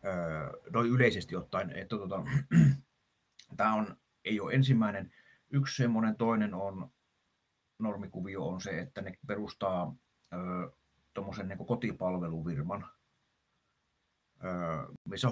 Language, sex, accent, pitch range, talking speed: Finnish, male, native, 90-125 Hz, 85 wpm